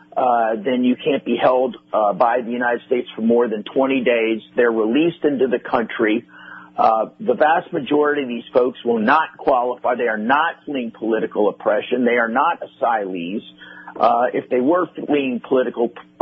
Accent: American